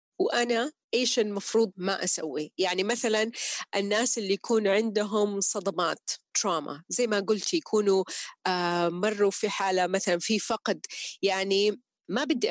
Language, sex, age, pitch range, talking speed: Arabic, female, 30-49, 195-255 Hz, 125 wpm